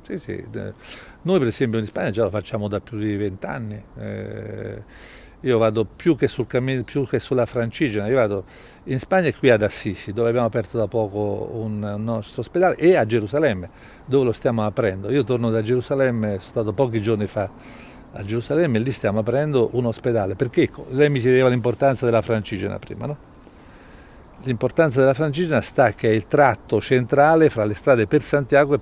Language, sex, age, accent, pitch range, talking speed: Italian, male, 50-69, native, 105-135 Hz, 185 wpm